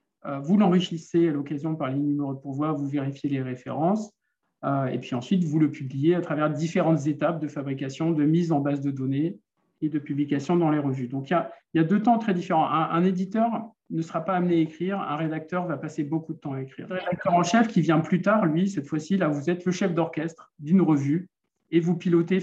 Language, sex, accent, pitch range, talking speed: French, male, French, 145-175 Hz, 230 wpm